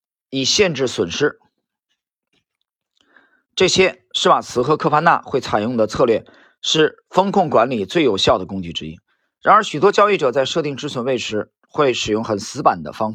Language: Chinese